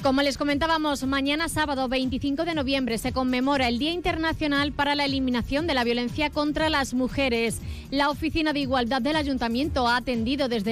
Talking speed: 175 wpm